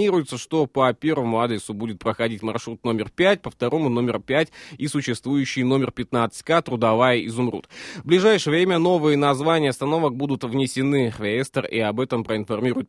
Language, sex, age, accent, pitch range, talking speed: Russian, male, 20-39, native, 120-150 Hz, 155 wpm